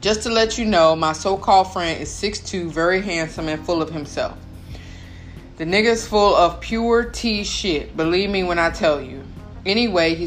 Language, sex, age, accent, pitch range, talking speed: English, female, 20-39, American, 150-180 Hz, 180 wpm